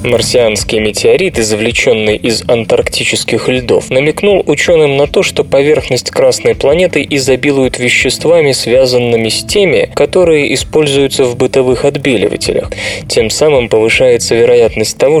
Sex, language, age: male, Russian, 20-39